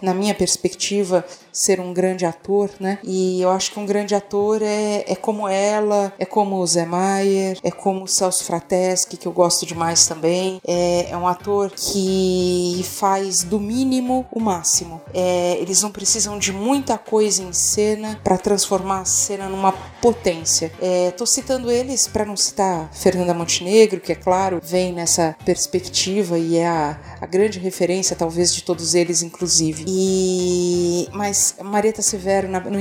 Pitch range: 180-210 Hz